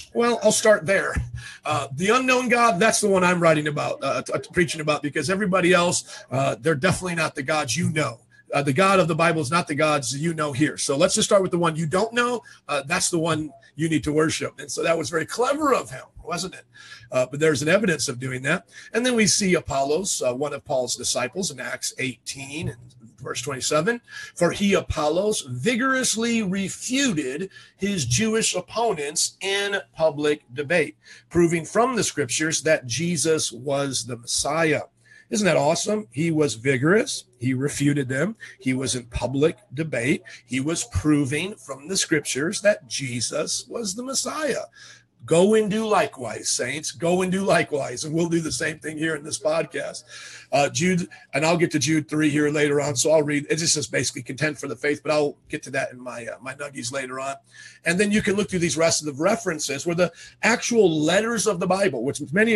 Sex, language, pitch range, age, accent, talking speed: male, English, 145-195 Hz, 40-59, American, 200 wpm